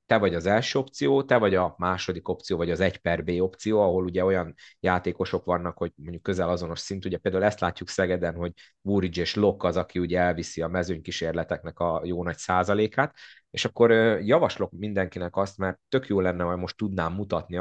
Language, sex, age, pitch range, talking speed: Hungarian, male, 30-49, 90-110 Hz, 200 wpm